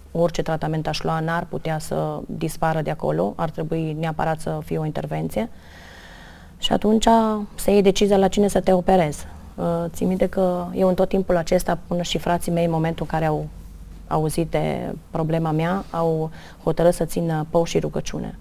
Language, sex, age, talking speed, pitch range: Romanian, female, 30-49, 185 wpm, 160-180 Hz